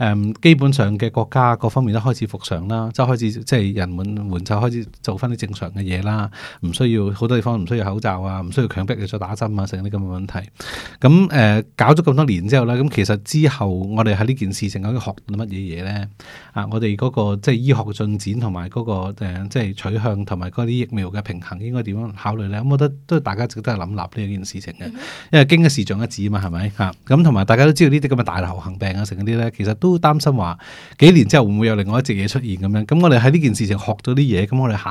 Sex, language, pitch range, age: male, Chinese, 100-130 Hz, 20-39